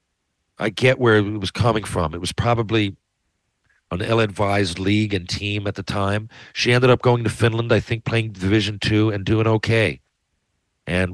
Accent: American